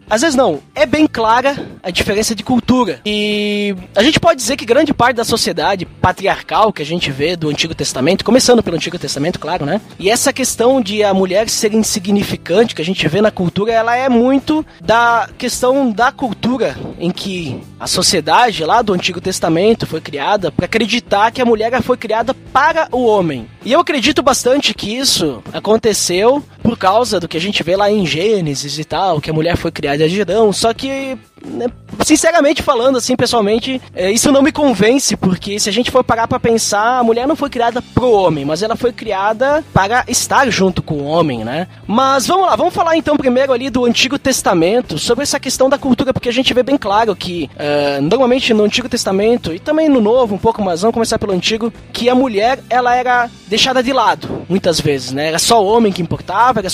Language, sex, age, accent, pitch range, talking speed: Portuguese, male, 20-39, Brazilian, 185-255 Hz, 205 wpm